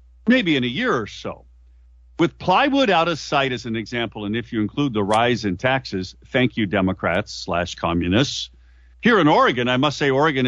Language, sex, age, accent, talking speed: English, male, 50-69, American, 195 wpm